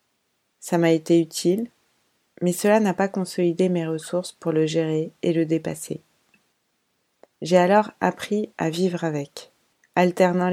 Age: 20-39